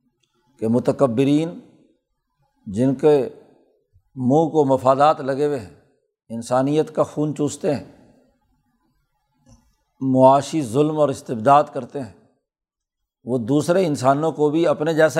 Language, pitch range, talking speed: Urdu, 130-160 Hz, 110 wpm